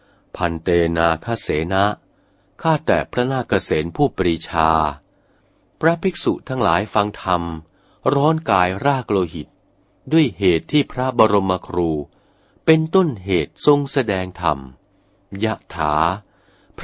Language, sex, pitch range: Thai, male, 90-135 Hz